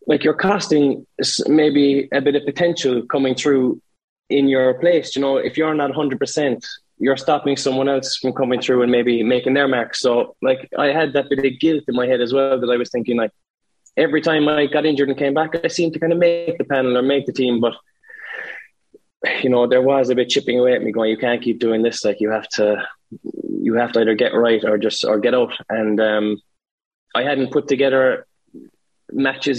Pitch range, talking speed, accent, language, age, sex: 125-150 Hz, 220 wpm, Irish, English, 20-39, male